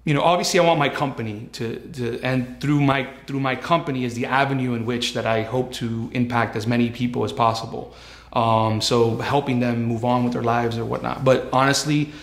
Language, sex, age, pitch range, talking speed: English, male, 30-49, 115-140 Hz, 210 wpm